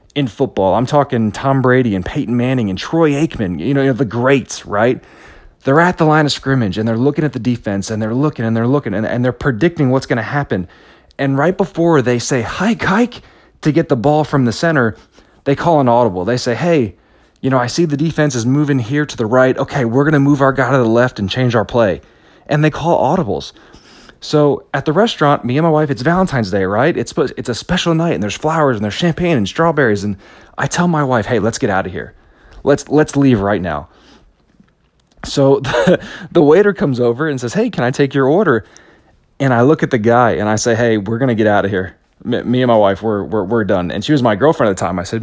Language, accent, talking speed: English, American, 245 wpm